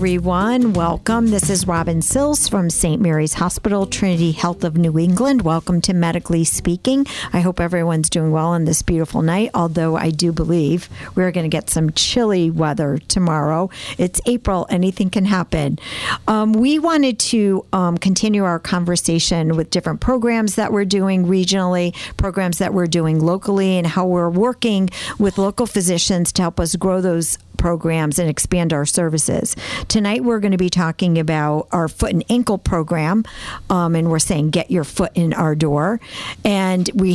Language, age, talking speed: English, 50-69, 170 wpm